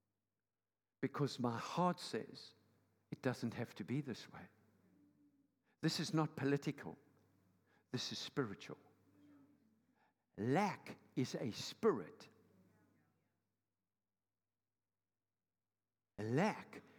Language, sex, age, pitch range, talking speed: English, male, 60-79, 100-150 Hz, 80 wpm